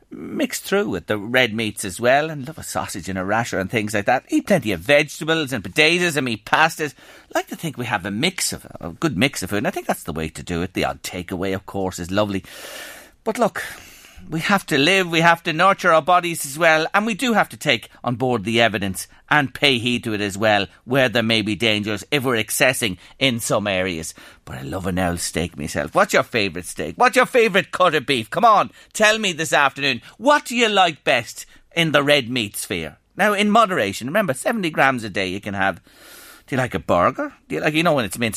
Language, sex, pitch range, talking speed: English, male, 105-165 Hz, 245 wpm